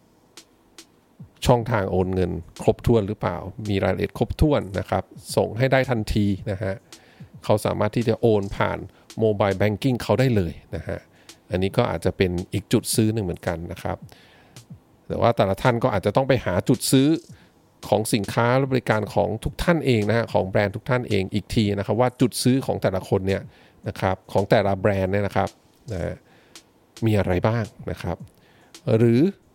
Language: English